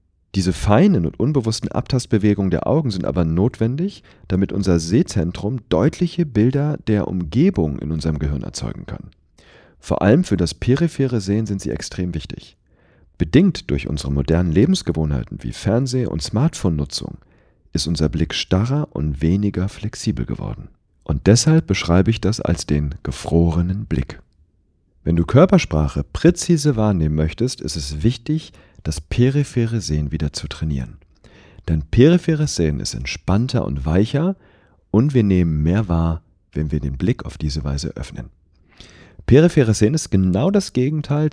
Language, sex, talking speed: German, male, 145 wpm